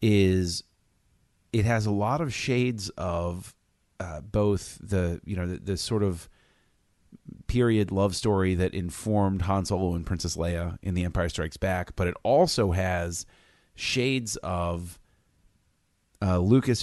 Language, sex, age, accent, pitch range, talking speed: English, male, 30-49, American, 85-110 Hz, 145 wpm